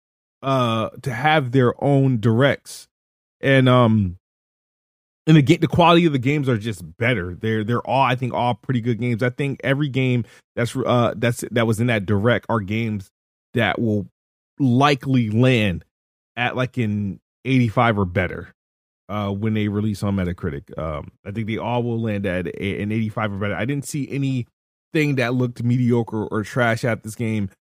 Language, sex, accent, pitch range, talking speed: English, male, American, 105-130 Hz, 185 wpm